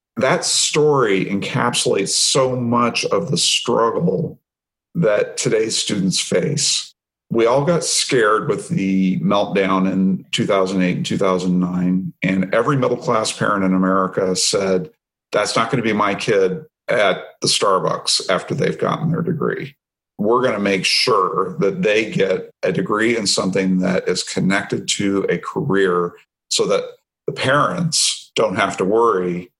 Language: English